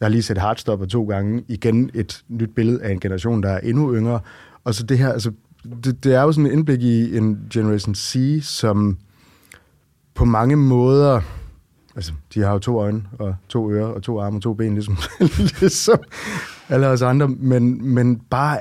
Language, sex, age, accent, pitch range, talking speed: Danish, male, 20-39, native, 100-125 Hz, 195 wpm